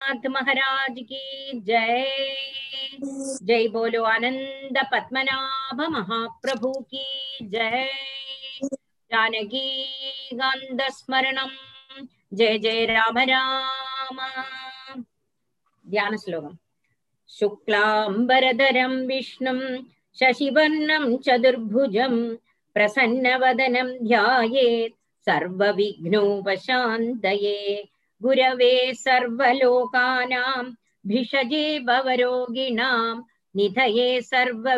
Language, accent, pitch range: Tamil, native, 225-260 Hz